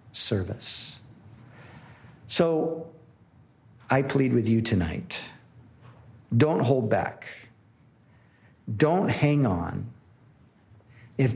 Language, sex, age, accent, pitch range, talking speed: English, male, 50-69, American, 115-140 Hz, 75 wpm